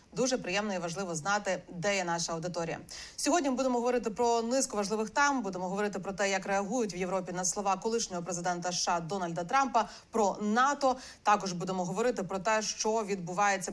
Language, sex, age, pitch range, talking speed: Ukrainian, female, 30-49, 195-250 Hz, 180 wpm